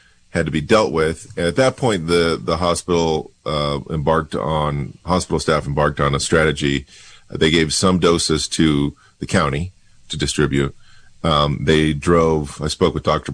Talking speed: 165 wpm